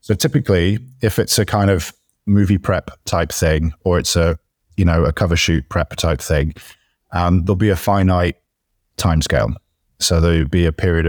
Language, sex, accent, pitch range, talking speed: English, male, British, 85-95 Hz, 190 wpm